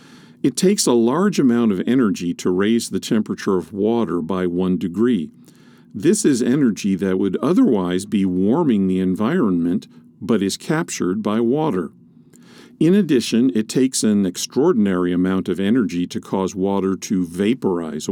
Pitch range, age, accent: 95-120 Hz, 50-69, American